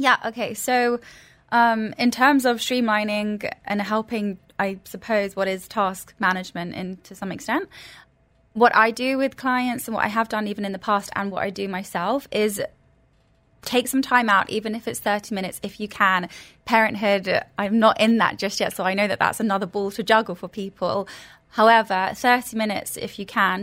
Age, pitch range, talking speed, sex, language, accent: 20-39, 190-225 Hz, 195 wpm, female, English, British